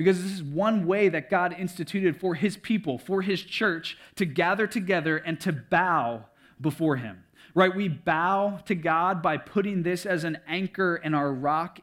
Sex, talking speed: male, 185 wpm